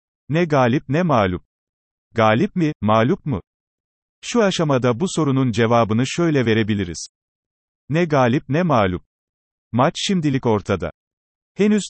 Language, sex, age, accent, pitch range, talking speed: Turkish, male, 40-59, native, 110-145 Hz, 115 wpm